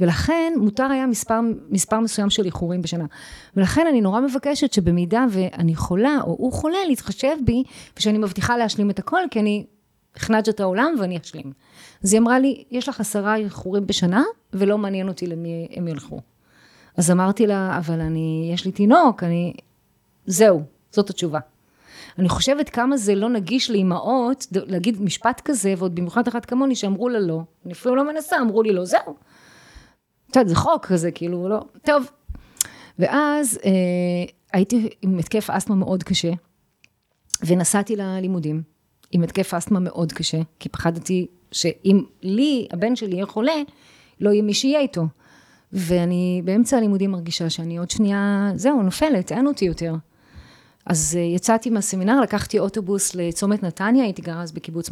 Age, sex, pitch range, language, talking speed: 30-49, female, 175-235 Hz, Hebrew, 155 wpm